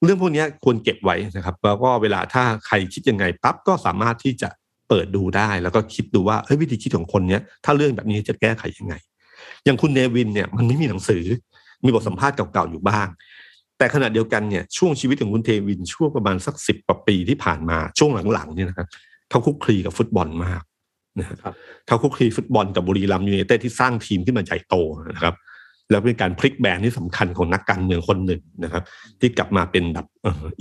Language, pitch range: Thai, 95-125 Hz